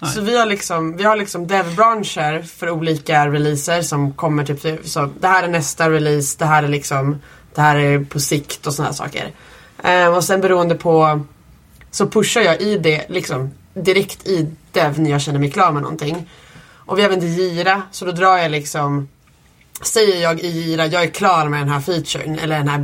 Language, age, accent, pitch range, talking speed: Swedish, 20-39, native, 145-175 Hz, 200 wpm